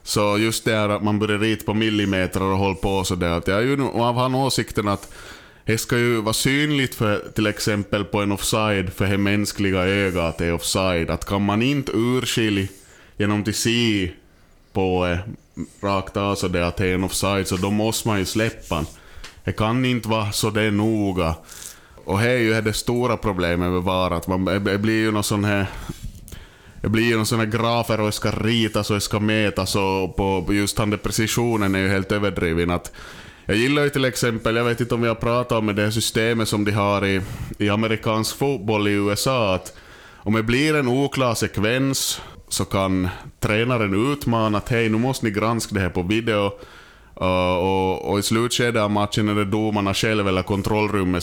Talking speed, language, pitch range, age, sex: 190 wpm, Swedish, 95-115 Hz, 20-39, male